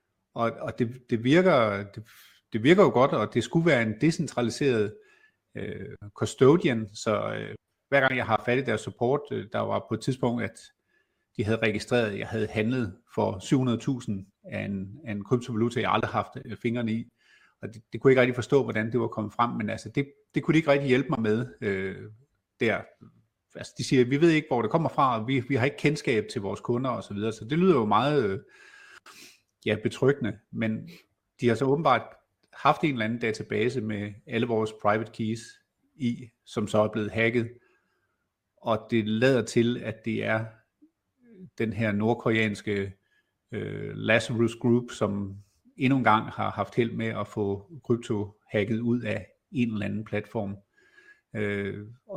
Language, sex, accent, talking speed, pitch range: Danish, male, native, 185 wpm, 110-130 Hz